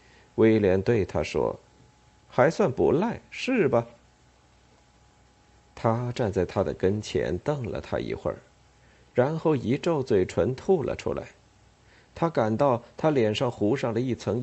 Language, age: Chinese, 50-69